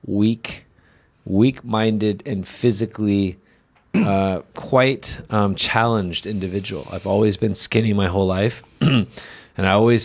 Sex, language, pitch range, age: male, Chinese, 90-110 Hz, 30-49